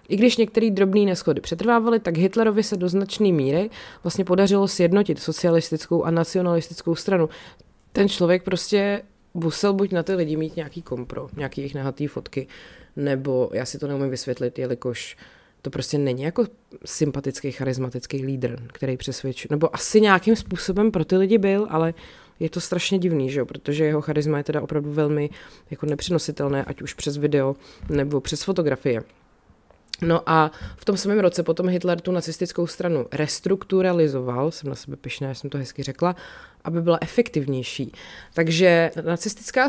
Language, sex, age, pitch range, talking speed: Czech, female, 20-39, 145-185 Hz, 160 wpm